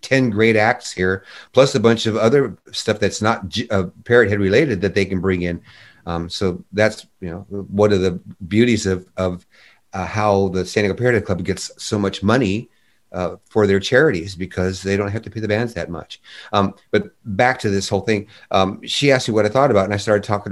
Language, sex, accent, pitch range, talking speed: English, male, American, 95-110 Hz, 220 wpm